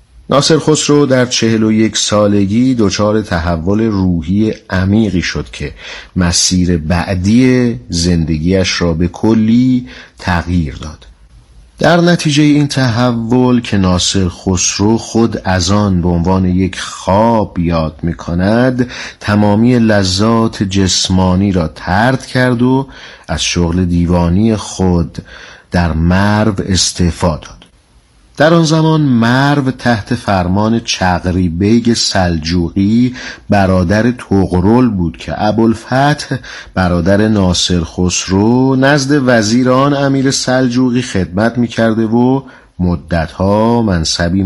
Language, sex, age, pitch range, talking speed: Persian, male, 50-69, 90-120 Hz, 105 wpm